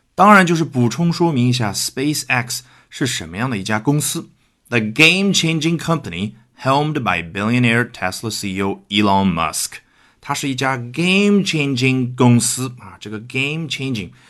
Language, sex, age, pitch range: Chinese, male, 30-49, 100-150 Hz